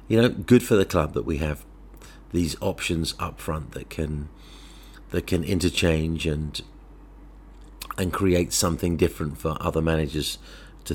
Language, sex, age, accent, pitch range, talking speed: English, male, 40-59, British, 75-90 Hz, 150 wpm